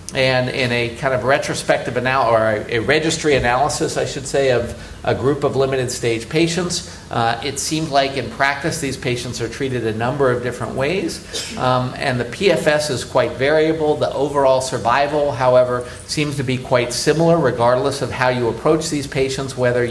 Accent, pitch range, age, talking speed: American, 120-145 Hz, 50-69, 180 wpm